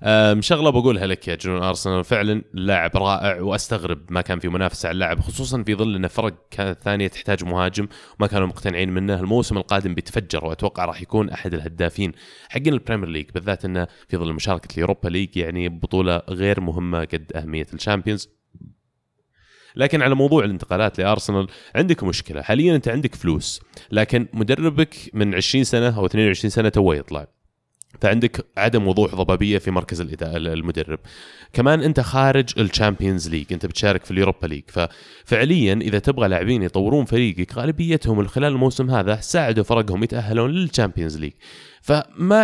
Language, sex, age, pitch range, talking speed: Arabic, male, 20-39, 90-120 Hz, 155 wpm